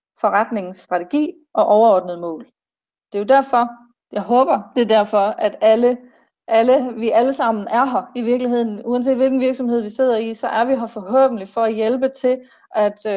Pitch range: 210-255 Hz